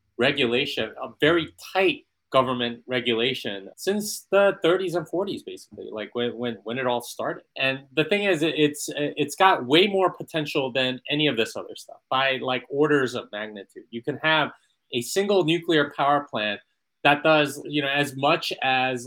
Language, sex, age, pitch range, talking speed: English, male, 30-49, 125-160 Hz, 170 wpm